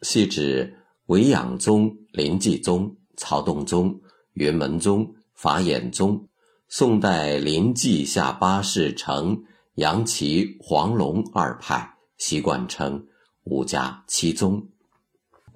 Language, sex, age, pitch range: Chinese, male, 50-69, 75-120 Hz